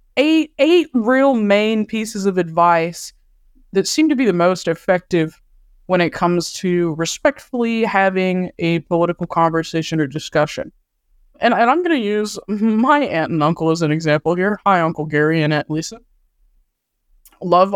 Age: 20-39